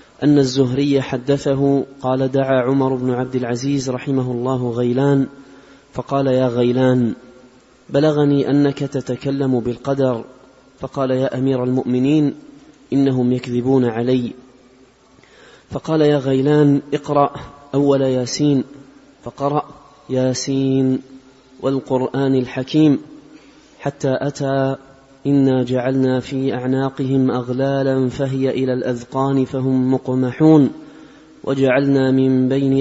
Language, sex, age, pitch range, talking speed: Arabic, male, 30-49, 130-140 Hz, 95 wpm